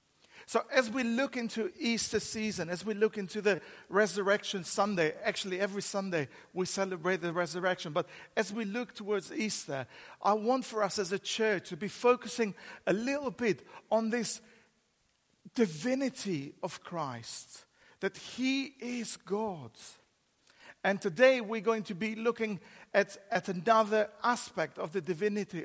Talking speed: 145 wpm